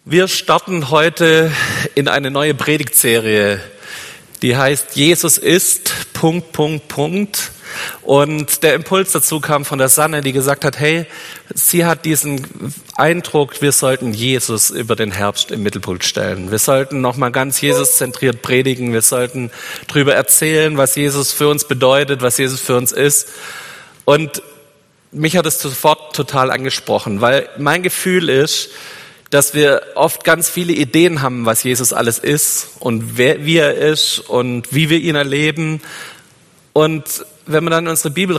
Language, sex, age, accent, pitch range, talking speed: German, male, 40-59, German, 130-160 Hz, 155 wpm